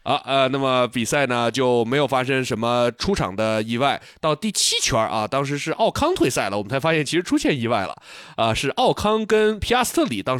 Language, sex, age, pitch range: Chinese, male, 20-39, 115-160 Hz